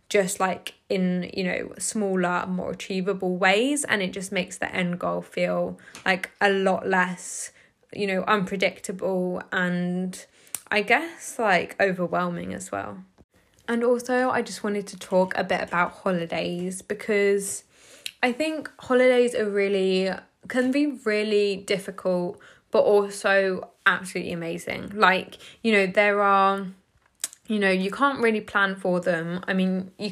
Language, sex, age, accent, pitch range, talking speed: English, female, 10-29, British, 180-210 Hz, 145 wpm